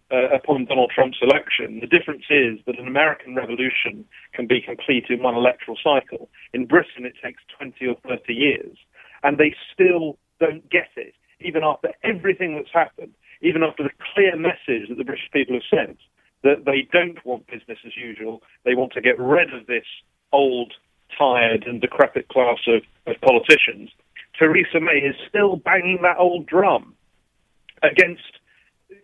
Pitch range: 125-165 Hz